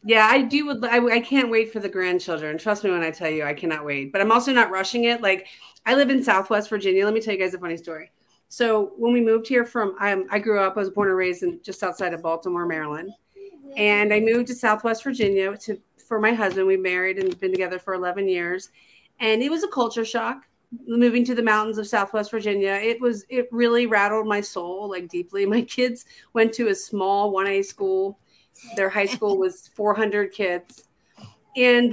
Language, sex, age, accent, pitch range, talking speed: English, female, 30-49, American, 195-240 Hz, 220 wpm